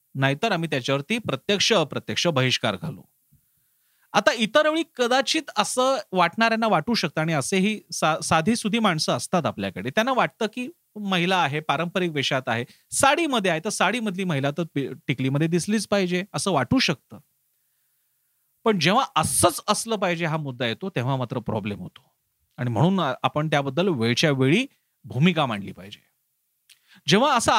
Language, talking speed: Marathi, 145 wpm